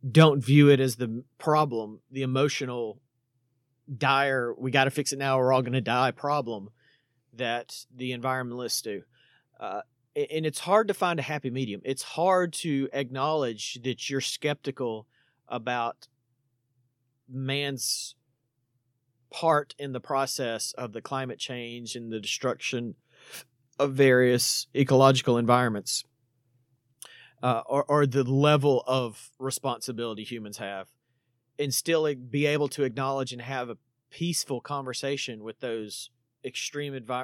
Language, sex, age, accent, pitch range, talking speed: English, male, 40-59, American, 125-140 Hz, 130 wpm